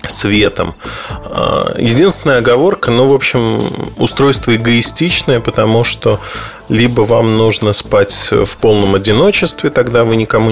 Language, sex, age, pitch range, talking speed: Russian, male, 20-39, 105-135 Hz, 115 wpm